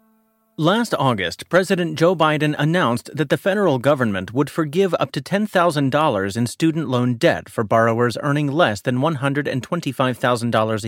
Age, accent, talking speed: 30-49, American, 140 wpm